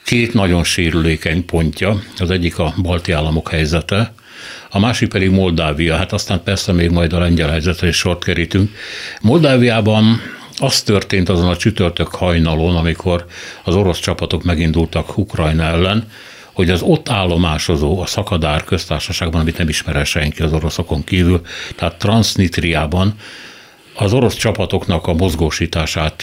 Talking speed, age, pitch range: 135 wpm, 60-79, 80-100 Hz